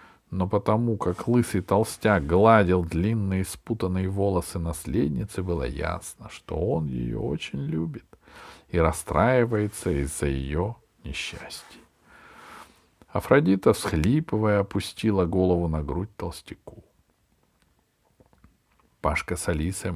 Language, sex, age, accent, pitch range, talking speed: Russian, male, 50-69, native, 85-110 Hz, 95 wpm